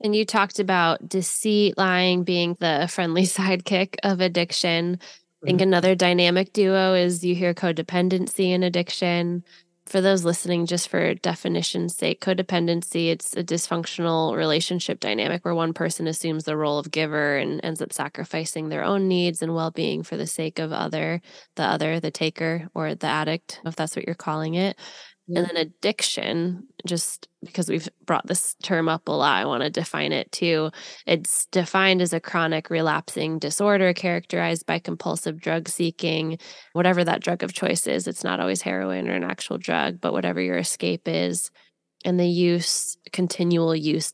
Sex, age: female, 10-29